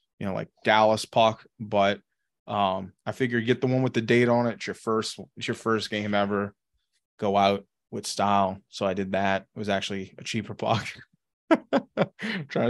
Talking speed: 190 wpm